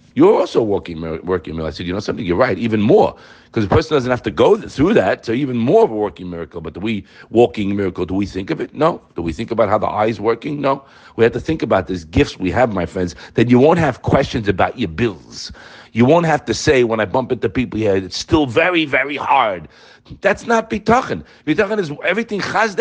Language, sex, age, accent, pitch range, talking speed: English, male, 50-69, American, 115-180 Hz, 245 wpm